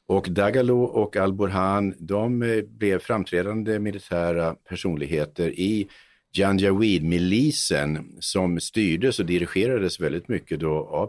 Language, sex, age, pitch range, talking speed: Swedish, male, 50-69, 80-105 Hz, 105 wpm